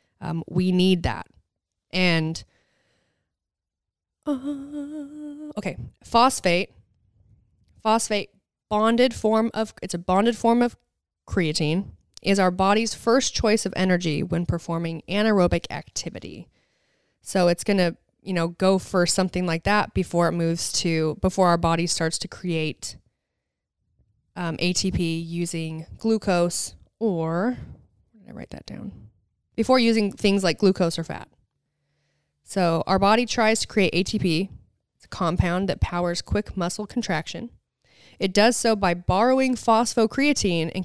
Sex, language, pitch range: female, English, 165-210 Hz